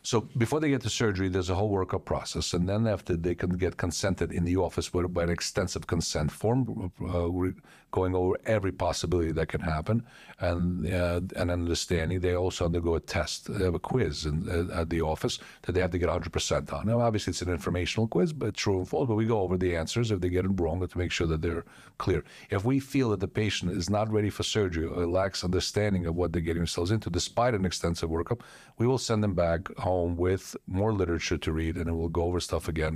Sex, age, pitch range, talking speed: male, 50-69, 85-100 Hz, 235 wpm